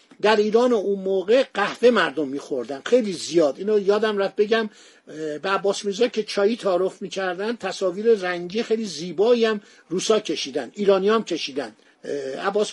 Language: Persian